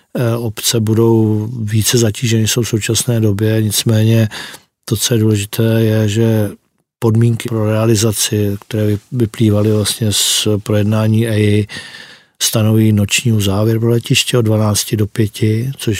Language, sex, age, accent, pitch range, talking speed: Czech, male, 40-59, native, 105-115 Hz, 130 wpm